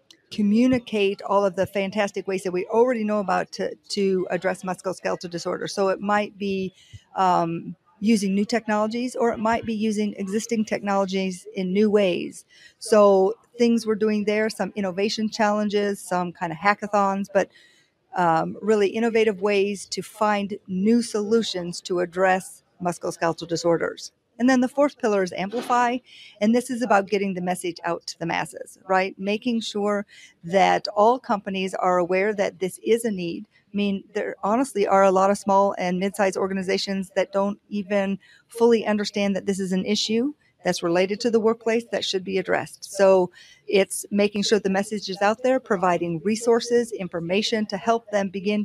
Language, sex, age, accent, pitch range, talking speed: English, female, 50-69, American, 190-220 Hz, 170 wpm